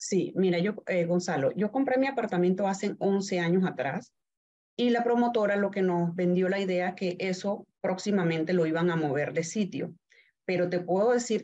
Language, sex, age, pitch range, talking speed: Spanish, female, 30-49, 170-205 Hz, 190 wpm